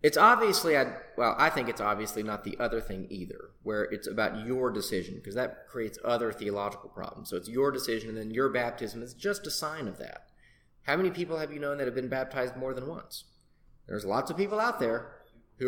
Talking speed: 220 wpm